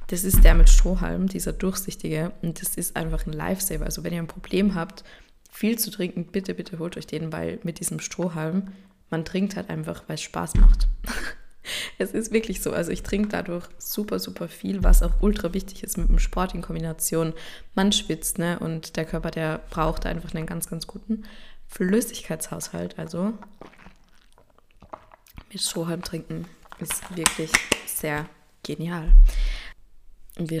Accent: German